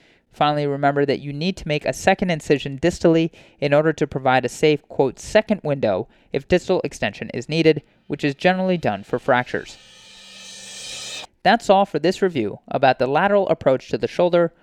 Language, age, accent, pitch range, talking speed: English, 30-49, American, 135-170 Hz, 175 wpm